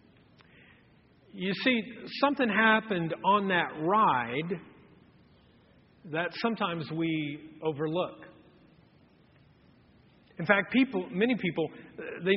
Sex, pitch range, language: male, 160-225 Hz, English